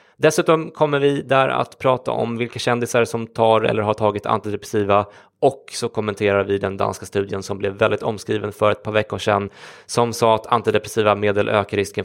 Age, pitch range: 20-39, 105-120 Hz